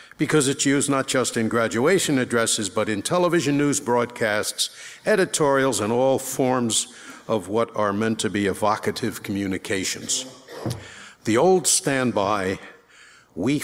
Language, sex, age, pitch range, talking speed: English, male, 60-79, 110-135 Hz, 130 wpm